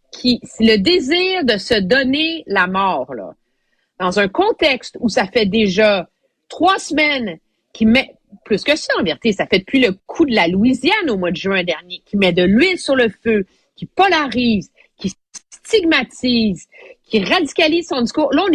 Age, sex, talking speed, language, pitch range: 40-59, female, 180 wpm, French, 195-285 Hz